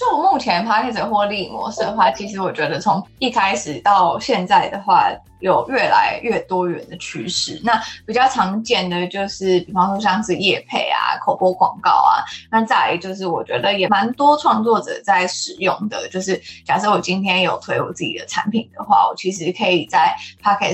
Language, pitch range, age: Chinese, 185-225 Hz, 20-39